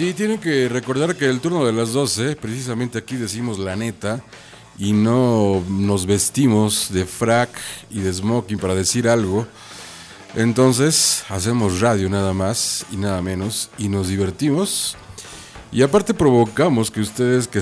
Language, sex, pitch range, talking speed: Spanish, male, 95-115 Hz, 150 wpm